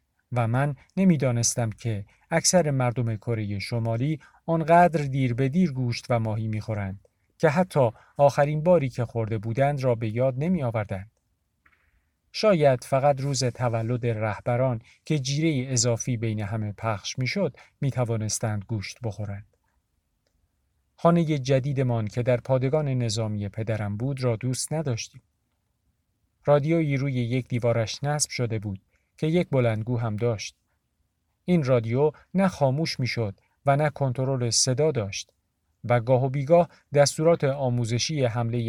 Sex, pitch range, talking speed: male, 110-145 Hz, 130 wpm